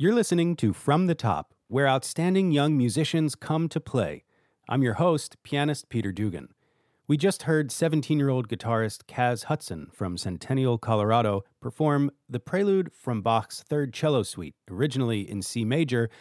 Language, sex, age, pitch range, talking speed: English, male, 40-59, 115-150 Hz, 150 wpm